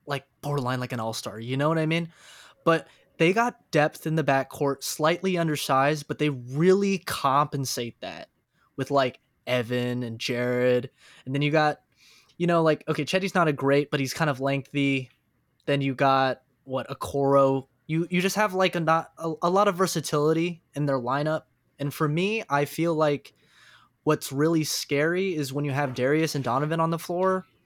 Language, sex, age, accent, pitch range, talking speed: English, male, 20-39, American, 135-165 Hz, 185 wpm